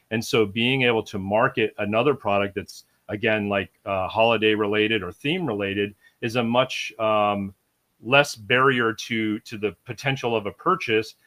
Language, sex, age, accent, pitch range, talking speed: English, male, 40-59, American, 105-135 Hz, 160 wpm